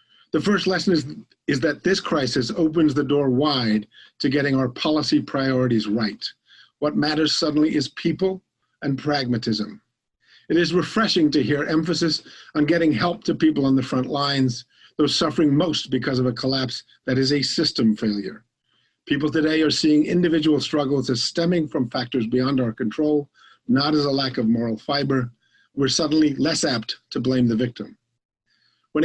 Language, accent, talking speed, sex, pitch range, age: English, American, 165 wpm, male, 130-160 Hz, 50-69